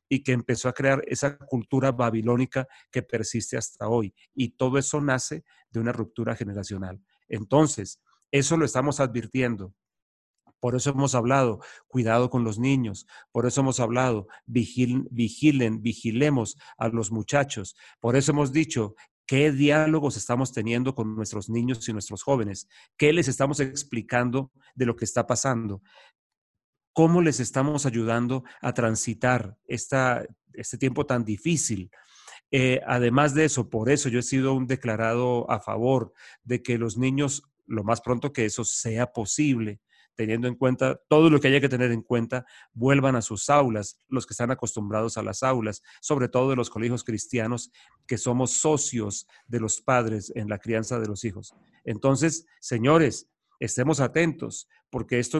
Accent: Mexican